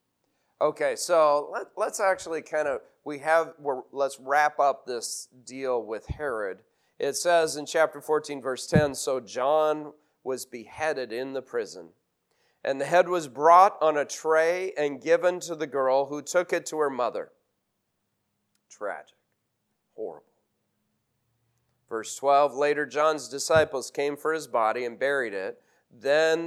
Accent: American